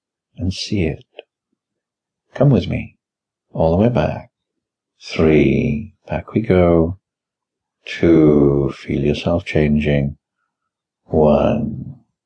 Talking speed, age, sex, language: 95 wpm, 60-79, male, English